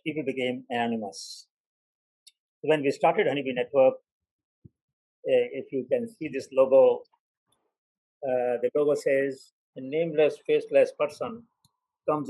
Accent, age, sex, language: Indian, 50-69, male, English